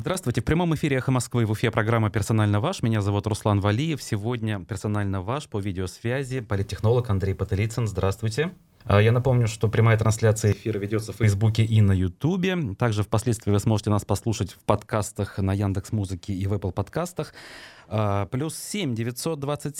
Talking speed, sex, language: 165 wpm, male, Russian